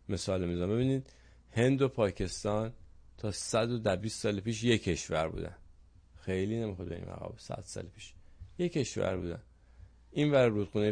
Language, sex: English, male